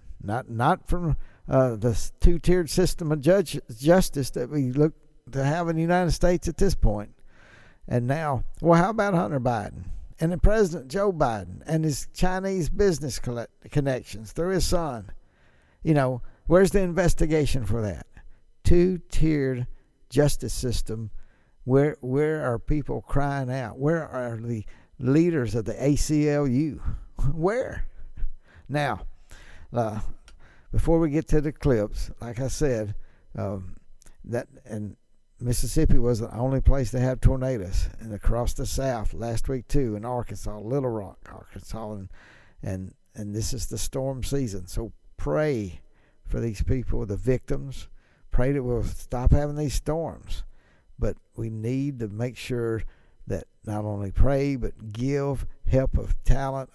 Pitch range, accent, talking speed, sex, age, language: 105-145 Hz, American, 145 wpm, male, 60-79, English